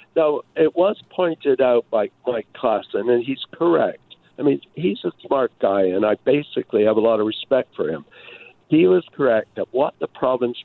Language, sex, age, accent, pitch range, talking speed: English, male, 60-79, American, 115-165 Hz, 190 wpm